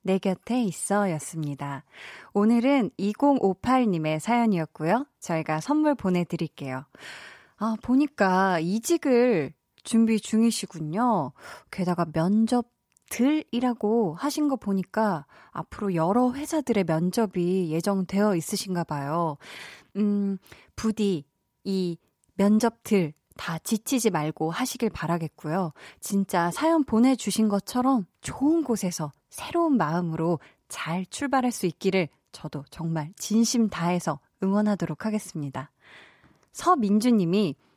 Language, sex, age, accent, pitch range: Korean, female, 20-39, native, 170-245 Hz